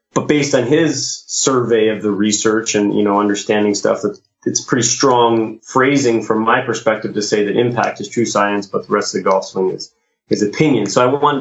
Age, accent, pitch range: 30-49, American, 105-130 Hz